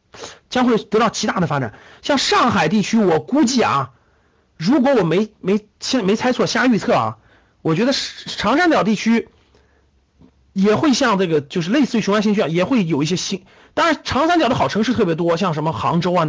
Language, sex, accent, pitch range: Chinese, male, native, 160-240 Hz